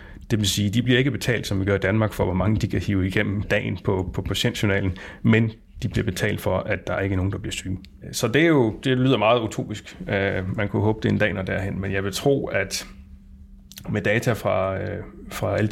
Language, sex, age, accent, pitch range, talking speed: Danish, male, 30-49, native, 95-110 Hz, 250 wpm